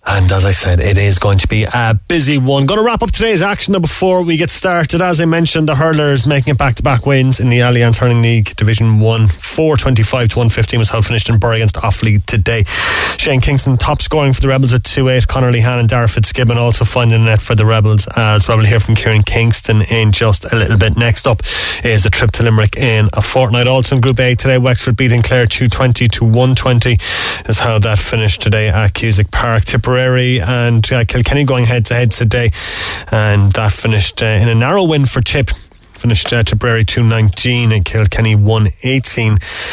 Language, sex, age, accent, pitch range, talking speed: English, male, 20-39, Irish, 110-130 Hz, 210 wpm